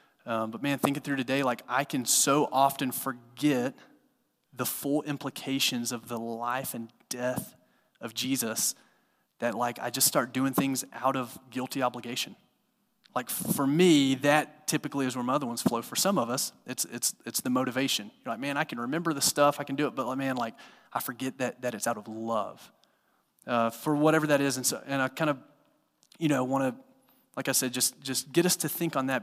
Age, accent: 30-49, American